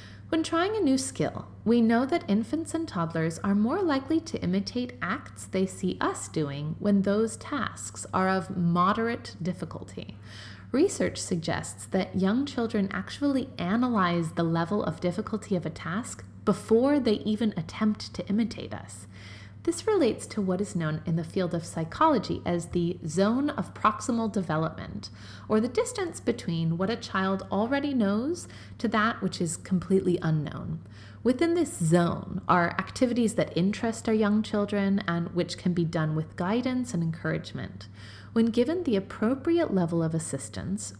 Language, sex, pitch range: English, female, 165-230 Hz